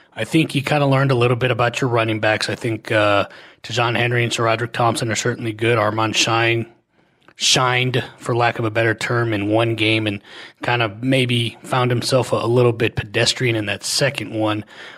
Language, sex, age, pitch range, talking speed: English, male, 30-49, 110-130 Hz, 205 wpm